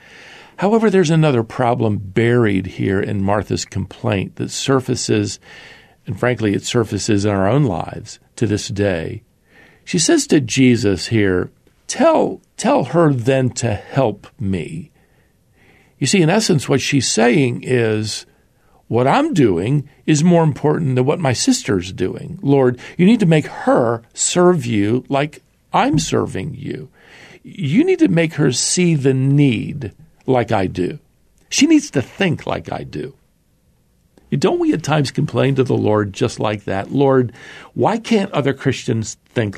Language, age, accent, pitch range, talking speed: English, 50-69, American, 105-150 Hz, 150 wpm